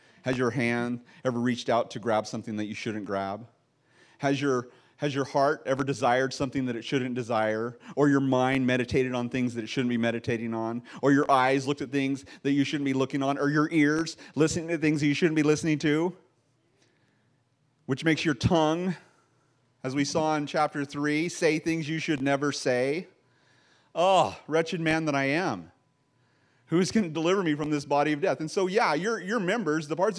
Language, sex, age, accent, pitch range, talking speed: English, male, 30-49, American, 130-160 Hz, 200 wpm